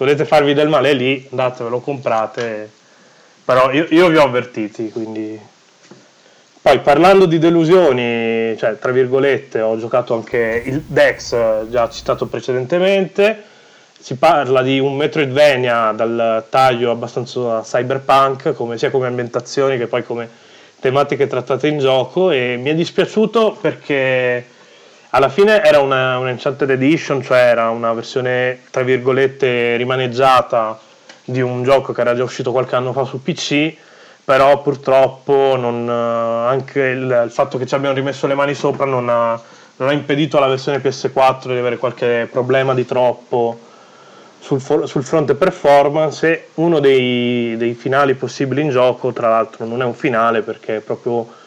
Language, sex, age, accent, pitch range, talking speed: Italian, male, 30-49, native, 120-145 Hz, 150 wpm